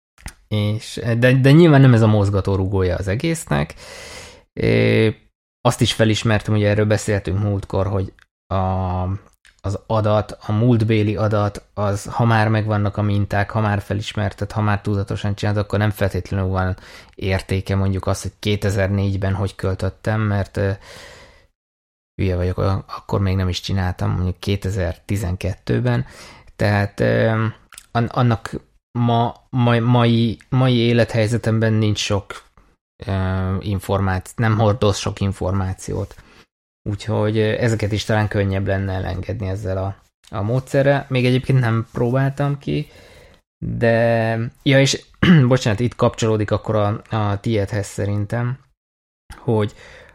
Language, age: Hungarian, 20-39